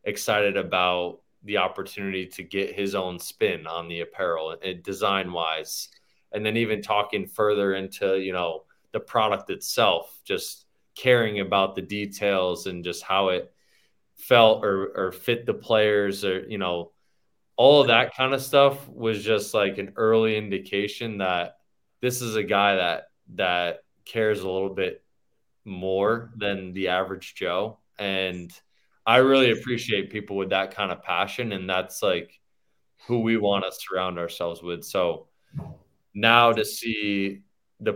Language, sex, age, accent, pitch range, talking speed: English, male, 20-39, American, 95-110 Hz, 155 wpm